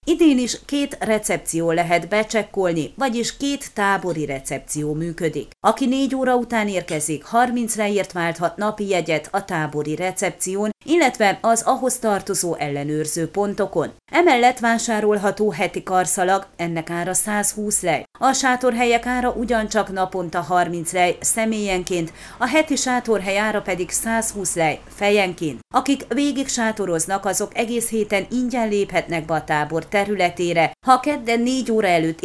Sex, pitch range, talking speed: female, 170-235 Hz, 130 wpm